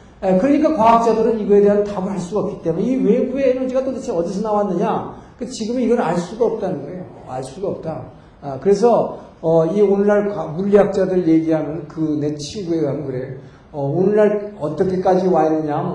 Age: 50-69